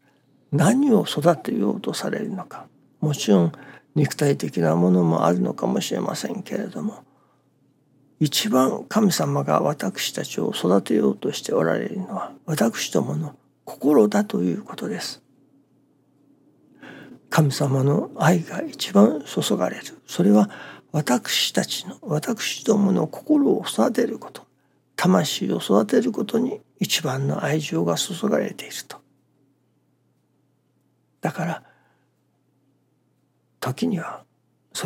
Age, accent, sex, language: 60-79, native, male, Japanese